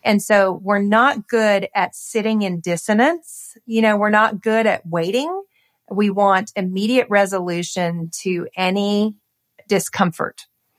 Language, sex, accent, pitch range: English, female, American, 180-210 Hz